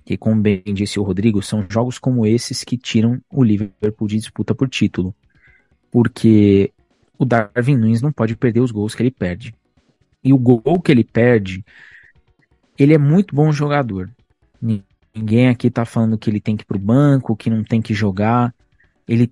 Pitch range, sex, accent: 105-130 Hz, male, Brazilian